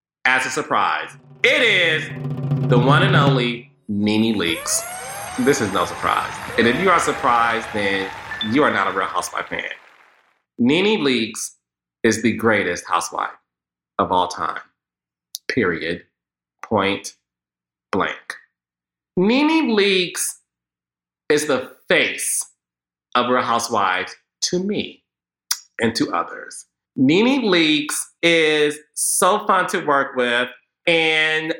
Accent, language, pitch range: American, English, 120-175 Hz